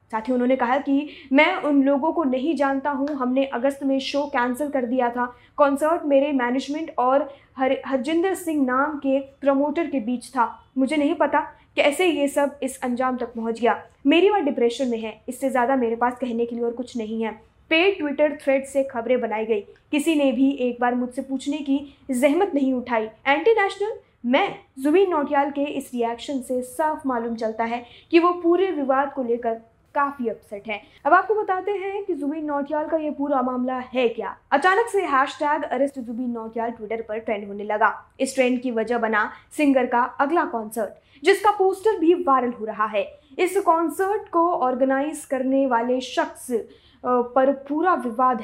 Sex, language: female, Hindi